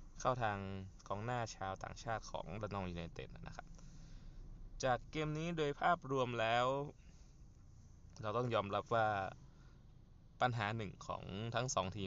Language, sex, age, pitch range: Thai, male, 20-39, 100-120 Hz